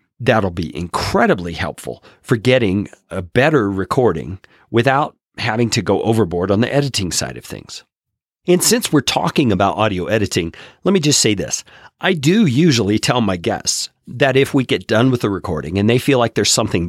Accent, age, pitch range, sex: American, 40-59, 95-130 Hz, male